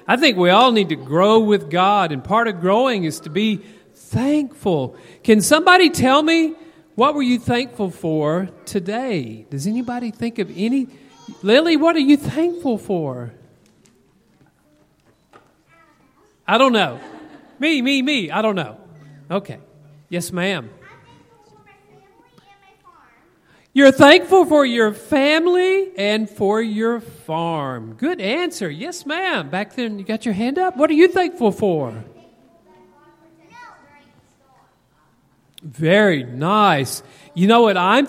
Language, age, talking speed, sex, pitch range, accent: English, 40-59, 130 wpm, male, 165-265 Hz, American